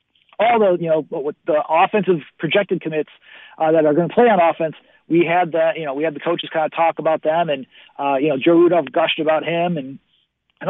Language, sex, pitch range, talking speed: English, male, 155-185 Hz, 235 wpm